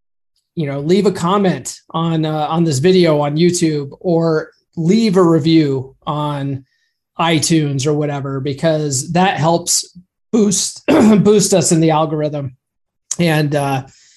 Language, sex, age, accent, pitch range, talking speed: English, male, 30-49, American, 150-195 Hz, 130 wpm